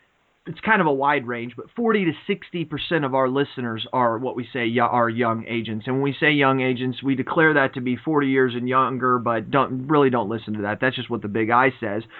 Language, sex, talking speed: English, male, 245 wpm